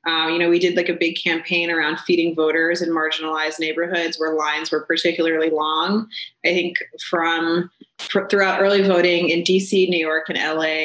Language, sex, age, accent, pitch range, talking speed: English, female, 20-39, American, 170-205 Hz, 175 wpm